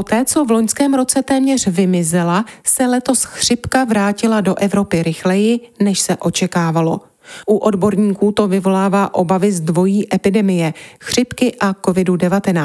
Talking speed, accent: 135 wpm, native